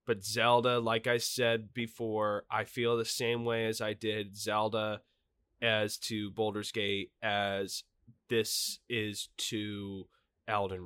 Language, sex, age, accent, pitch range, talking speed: English, male, 20-39, American, 100-120 Hz, 125 wpm